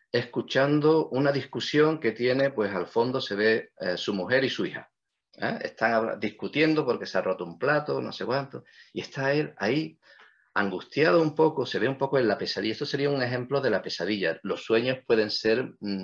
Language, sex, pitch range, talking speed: English, male, 100-140 Hz, 200 wpm